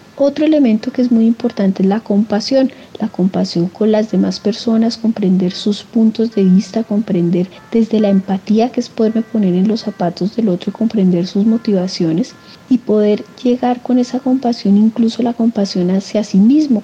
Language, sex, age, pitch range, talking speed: Spanish, female, 40-59, 195-230 Hz, 170 wpm